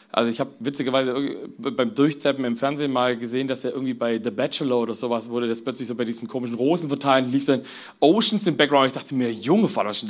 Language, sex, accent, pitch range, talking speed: German, male, German, 125-170 Hz, 225 wpm